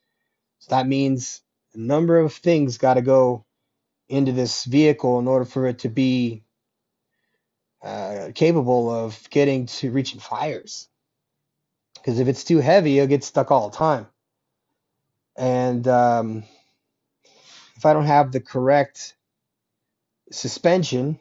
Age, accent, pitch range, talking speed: 30-49, American, 125-145 Hz, 125 wpm